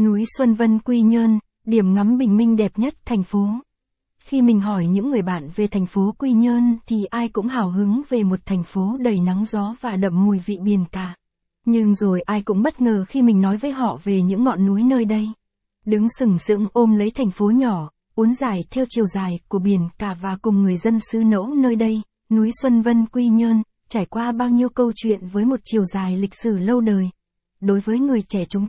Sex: female